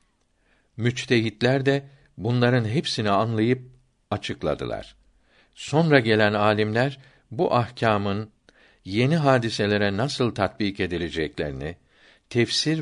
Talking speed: 80 wpm